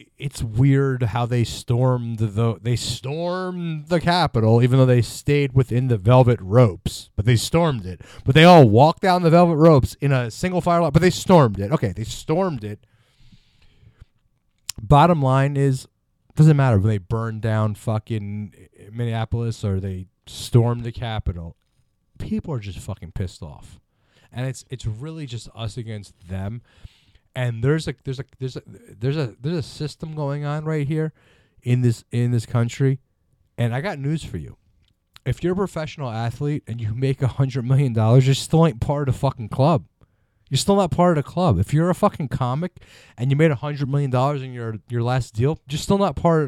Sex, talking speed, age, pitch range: male, 190 wpm, 30-49, 115-145 Hz